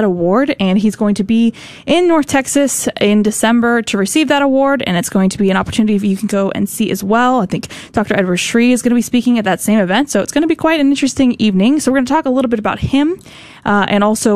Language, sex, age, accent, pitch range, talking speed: English, female, 20-39, American, 205-260 Hz, 275 wpm